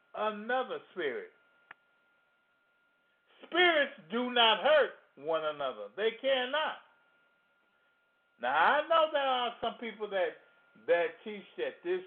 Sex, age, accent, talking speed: male, 50-69, American, 110 wpm